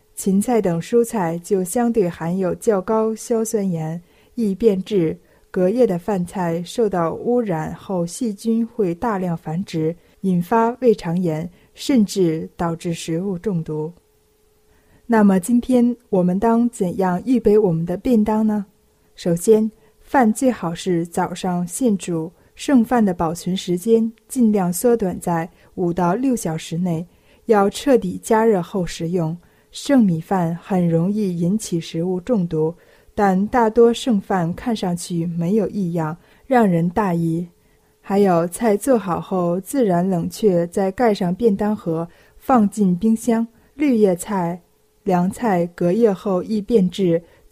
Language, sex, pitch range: Chinese, female, 175-225 Hz